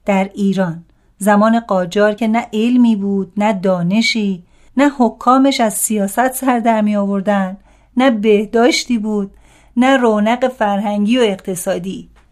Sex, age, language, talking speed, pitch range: female, 40-59, Persian, 125 wpm, 205-250 Hz